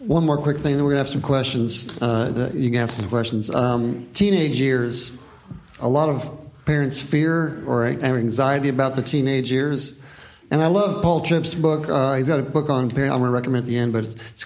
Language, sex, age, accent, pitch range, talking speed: English, male, 50-69, American, 130-155 Hz, 235 wpm